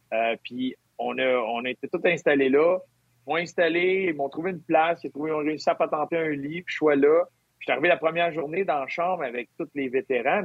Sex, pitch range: male, 135-170 Hz